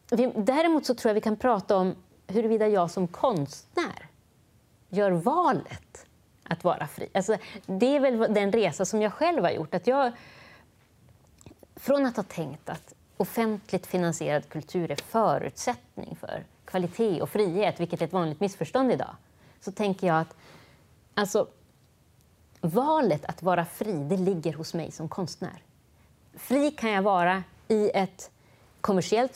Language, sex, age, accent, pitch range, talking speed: Swedish, female, 30-49, native, 170-230 Hz, 140 wpm